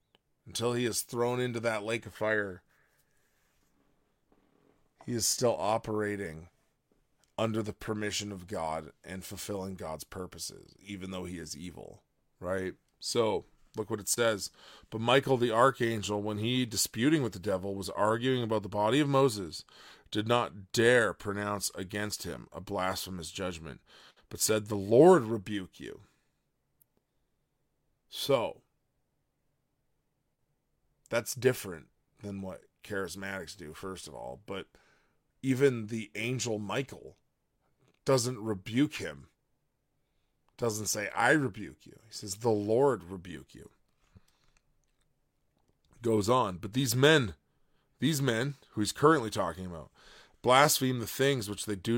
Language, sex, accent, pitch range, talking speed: English, male, American, 95-120 Hz, 130 wpm